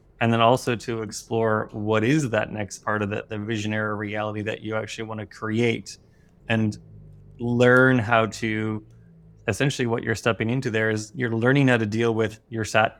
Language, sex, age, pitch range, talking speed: English, male, 20-39, 110-120 Hz, 185 wpm